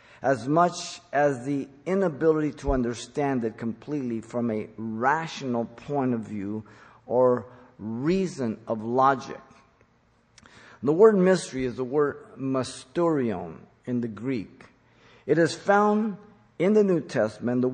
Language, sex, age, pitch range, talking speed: English, male, 50-69, 125-170 Hz, 125 wpm